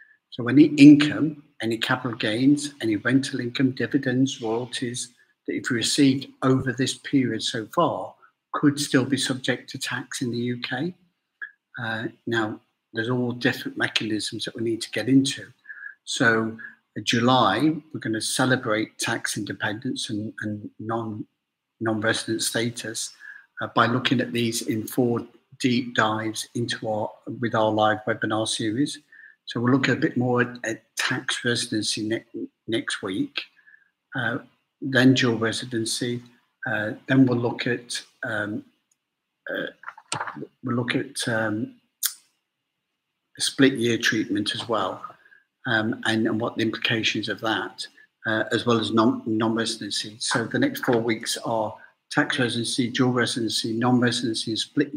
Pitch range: 115-140 Hz